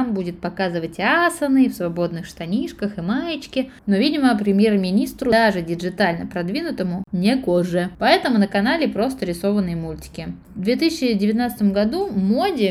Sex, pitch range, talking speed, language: female, 180-225 Hz, 125 wpm, Russian